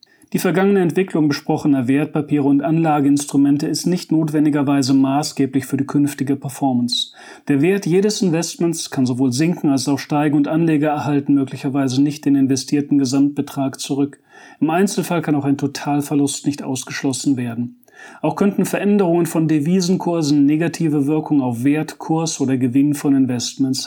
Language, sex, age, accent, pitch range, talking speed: German, male, 40-59, German, 135-160 Hz, 145 wpm